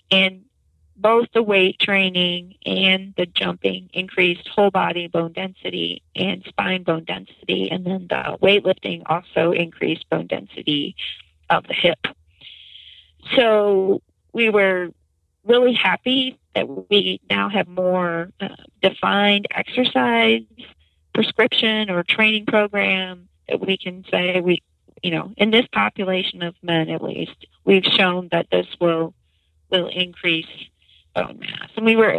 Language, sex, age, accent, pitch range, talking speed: English, female, 40-59, American, 165-205 Hz, 130 wpm